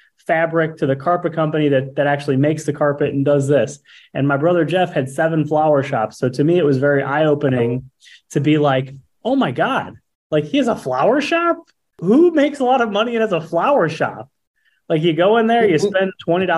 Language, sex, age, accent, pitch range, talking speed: English, male, 20-39, American, 135-165 Hz, 215 wpm